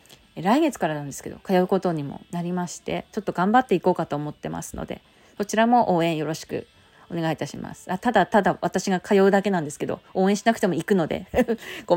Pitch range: 175-250 Hz